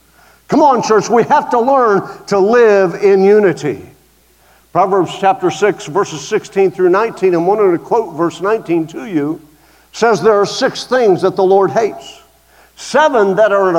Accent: American